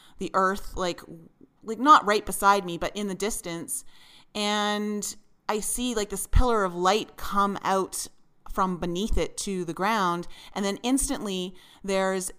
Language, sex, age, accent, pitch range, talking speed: English, female, 30-49, American, 185-225 Hz, 155 wpm